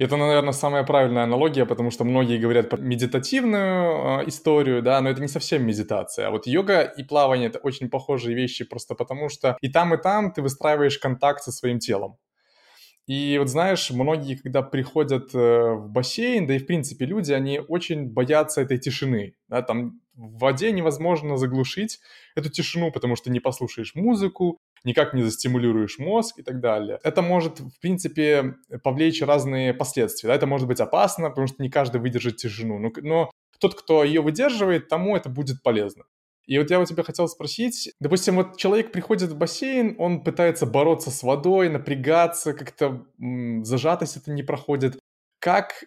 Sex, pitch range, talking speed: male, 125-165 Hz, 175 wpm